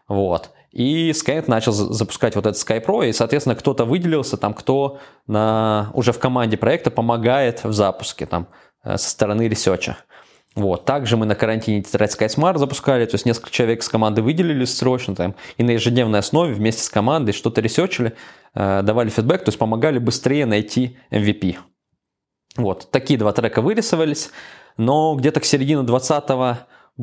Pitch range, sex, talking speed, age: 110-135 Hz, male, 155 wpm, 20-39